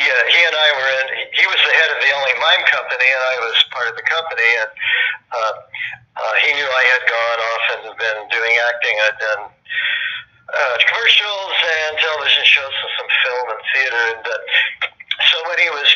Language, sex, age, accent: English, male, 50-69, American